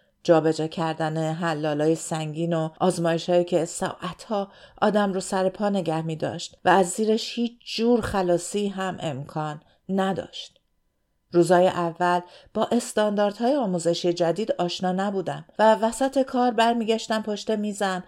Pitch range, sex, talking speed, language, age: 160-205 Hz, female, 125 wpm, Persian, 50-69